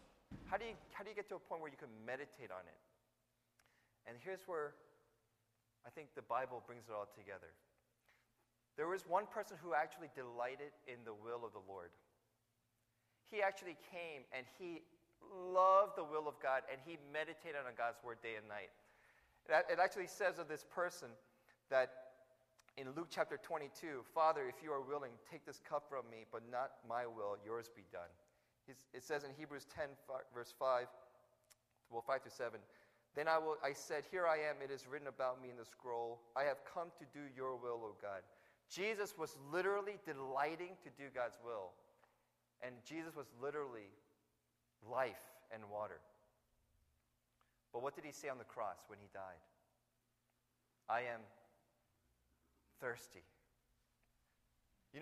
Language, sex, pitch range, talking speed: English, male, 115-155 Hz, 165 wpm